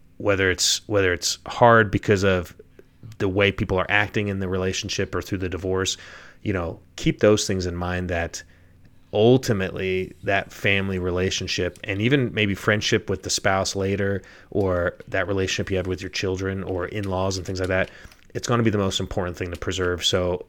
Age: 30-49